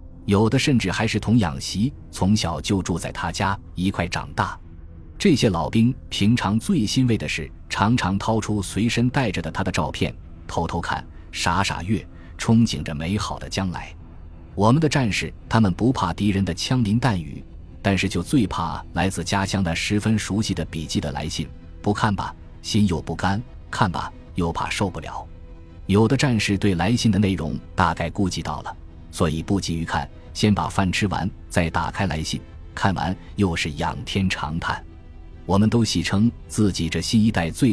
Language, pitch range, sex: Chinese, 85-105 Hz, male